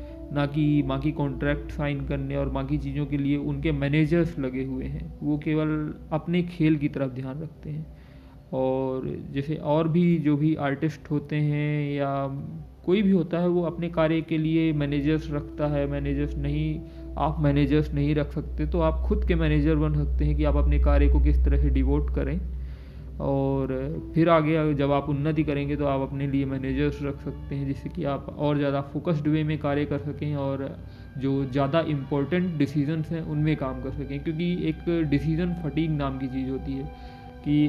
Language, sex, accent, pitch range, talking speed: Hindi, male, native, 140-155 Hz, 185 wpm